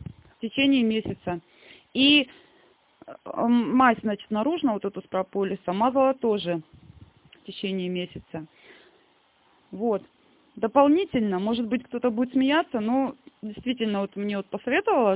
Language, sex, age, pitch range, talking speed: Russian, female, 20-39, 205-275 Hz, 115 wpm